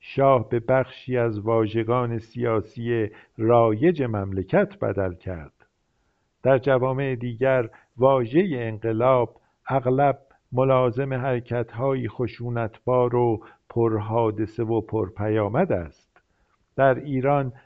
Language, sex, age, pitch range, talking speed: Persian, male, 50-69, 110-130 Hz, 90 wpm